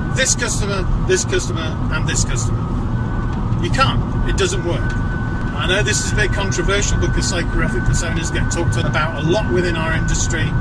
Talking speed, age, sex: 170 wpm, 40-59, male